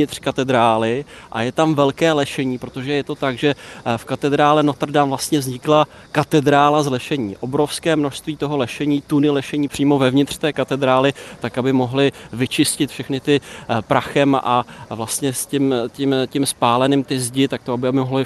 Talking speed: 170 wpm